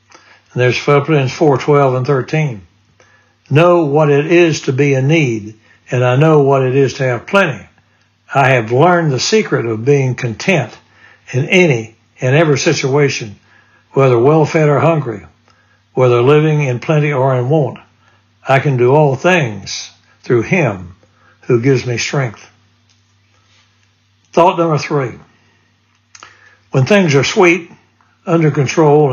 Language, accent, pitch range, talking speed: English, American, 110-150 Hz, 140 wpm